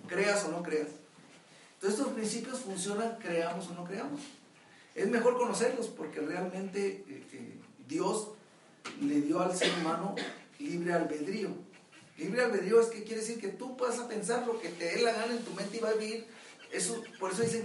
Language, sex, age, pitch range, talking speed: Spanish, male, 40-59, 195-240 Hz, 185 wpm